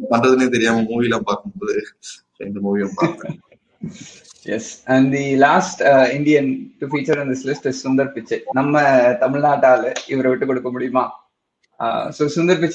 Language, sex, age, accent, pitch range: Tamil, male, 20-39, native, 130-170 Hz